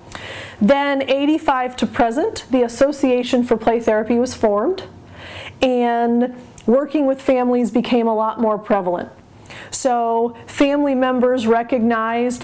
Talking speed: 115 wpm